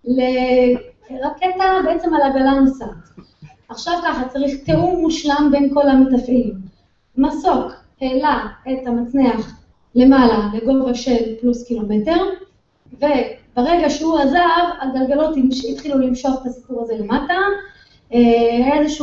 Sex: female